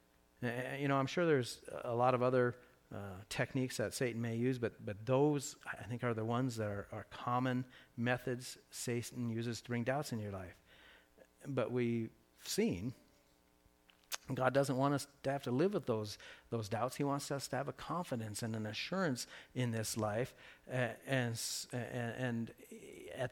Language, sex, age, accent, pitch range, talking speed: English, male, 50-69, American, 120-145 Hz, 180 wpm